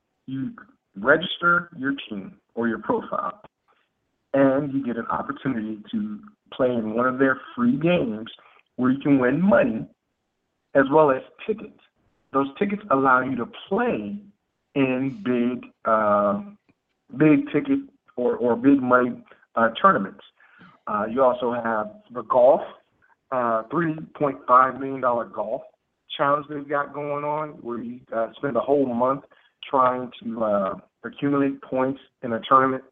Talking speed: 140 wpm